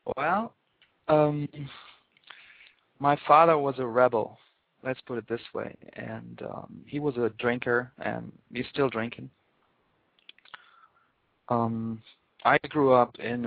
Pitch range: 115-135 Hz